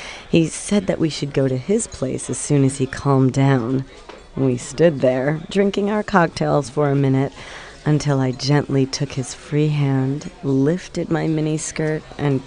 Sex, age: female, 40-59